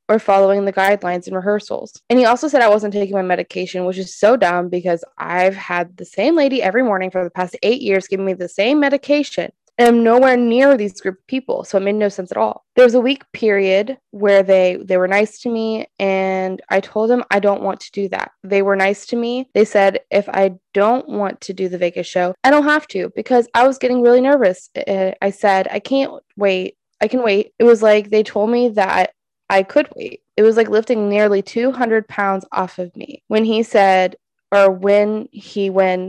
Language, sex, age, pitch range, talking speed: English, female, 20-39, 190-235 Hz, 225 wpm